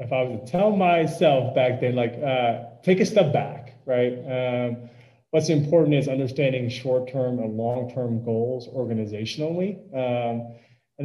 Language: English